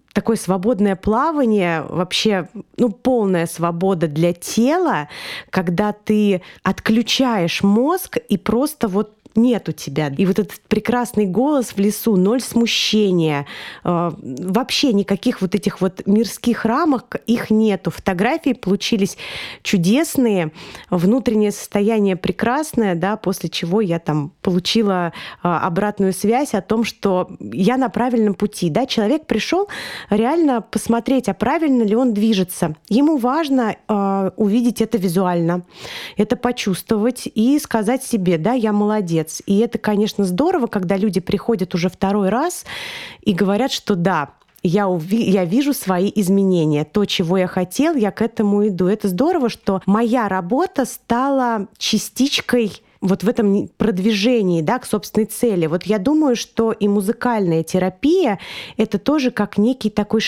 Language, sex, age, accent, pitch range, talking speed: Russian, female, 20-39, native, 190-235 Hz, 135 wpm